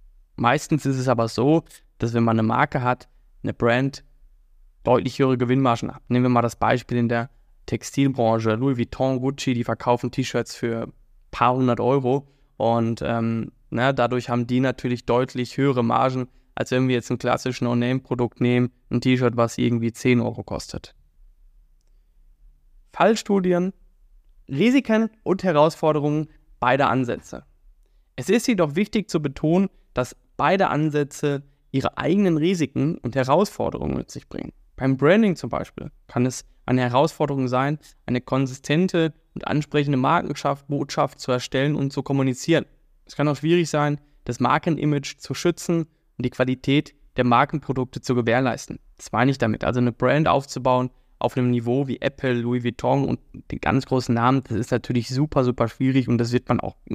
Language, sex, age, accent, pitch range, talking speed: German, male, 20-39, German, 120-145 Hz, 155 wpm